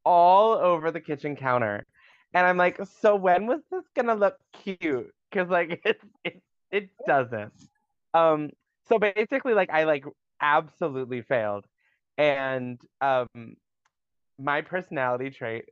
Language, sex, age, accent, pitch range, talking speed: English, male, 20-39, American, 115-160 Hz, 130 wpm